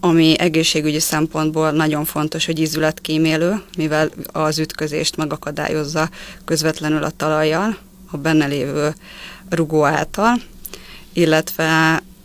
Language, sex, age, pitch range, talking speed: Hungarian, female, 20-39, 155-180 Hz, 100 wpm